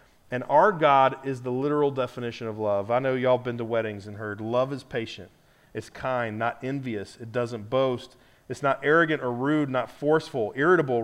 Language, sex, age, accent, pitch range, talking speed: English, male, 40-59, American, 135-175 Hz, 195 wpm